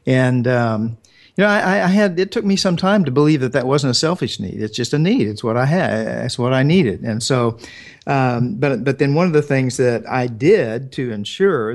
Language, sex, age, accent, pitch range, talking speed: English, male, 50-69, American, 115-145 Hz, 240 wpm